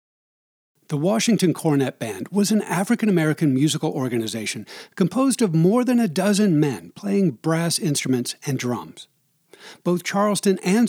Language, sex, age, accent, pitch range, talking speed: English, male, 60-79, American, 150-200 Hz, 130 wpm